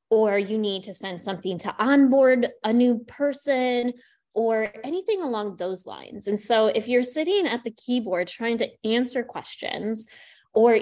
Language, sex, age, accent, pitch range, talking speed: English, female, 20-39, American, 210-265 Hz, 160 wpm